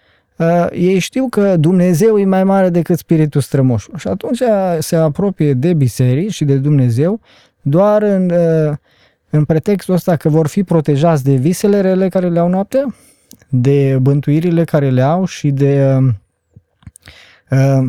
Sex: male